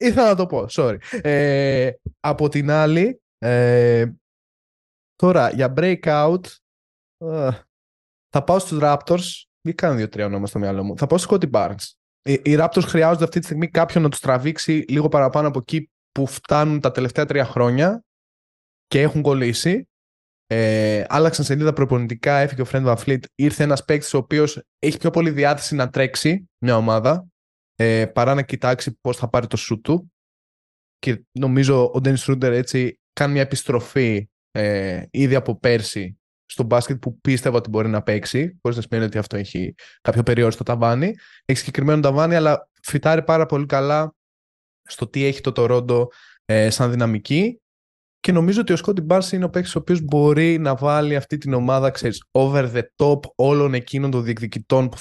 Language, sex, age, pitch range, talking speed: Greek, male, 20-39, 120-155 Hz, 170 wpm